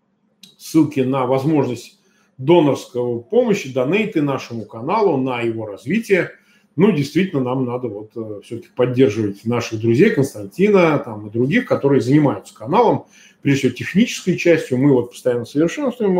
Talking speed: 130 wpm